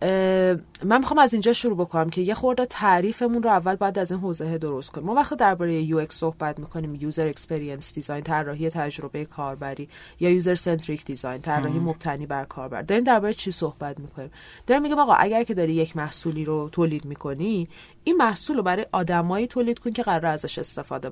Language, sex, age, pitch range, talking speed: Persian, female, 30-49, 155-200 Hz, 195 wpm